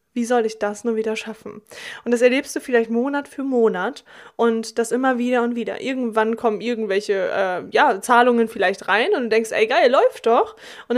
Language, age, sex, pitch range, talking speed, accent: German, 20-39, female, 230-265 Hz, 195 wpm, German